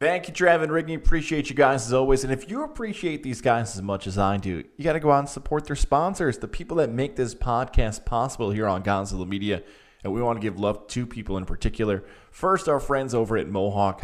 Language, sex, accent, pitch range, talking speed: English, male, American, 105-135 Hz, 245 wpm